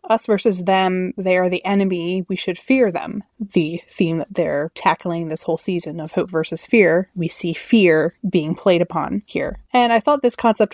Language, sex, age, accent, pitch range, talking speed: English, female, 20-39, American, 165-195 Hz, 195 wpm